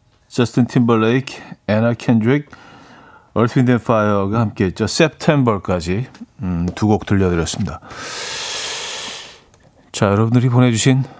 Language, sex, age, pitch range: Korean, male, 40-59, 110-155 Hz